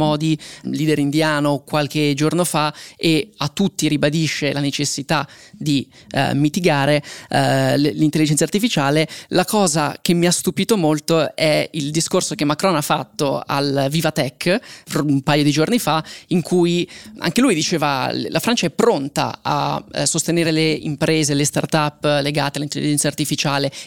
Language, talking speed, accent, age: Italian, 150 wpm, native, 20-39